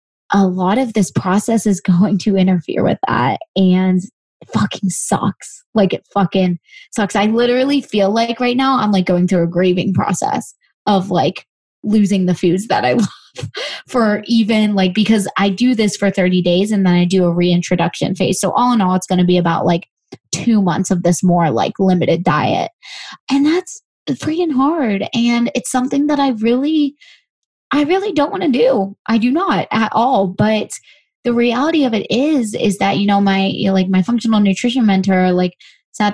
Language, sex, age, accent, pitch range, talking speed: English, female, 20-39, American, 185-240 Hz, 190 wpm